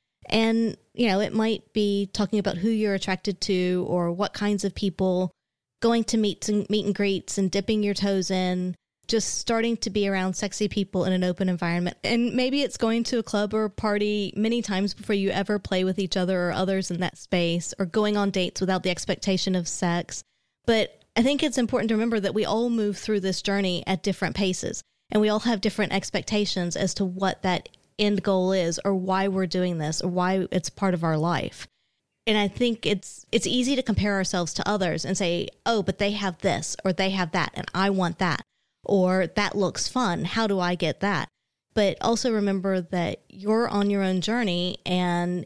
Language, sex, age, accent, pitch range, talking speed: English, female, 20-39, American, 185-215 Hz, 210 wpm